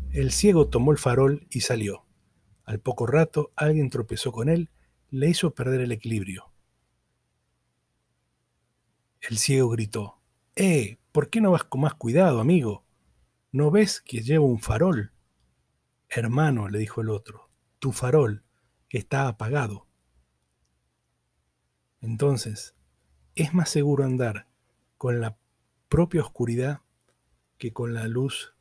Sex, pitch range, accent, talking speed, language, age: male, 110-140 Hz, Argentinian, 125 wpm, Spanish, 40-59